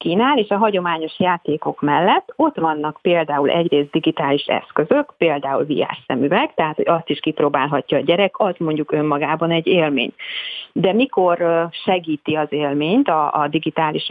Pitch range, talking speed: 155-210 Hz, 140 wpm